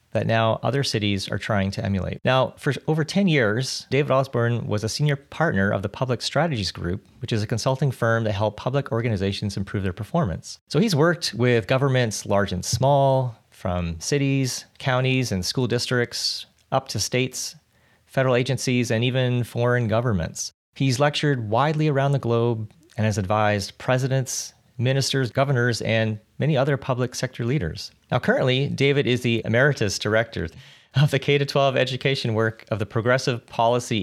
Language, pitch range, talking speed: English, 110-140 Hz, 160 wpm